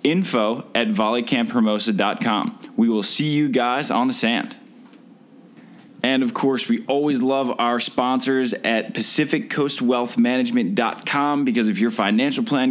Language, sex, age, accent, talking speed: English, male, 20-39, American, 125 wpm